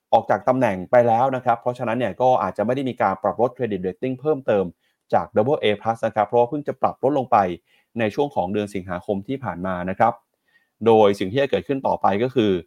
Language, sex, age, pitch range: Thai, male, 30-49, 100-130 Hz